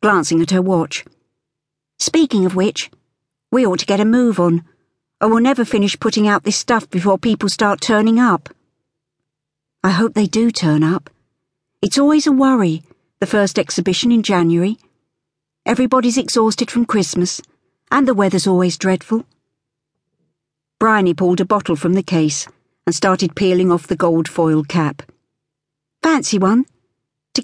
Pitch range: 155-220 Hz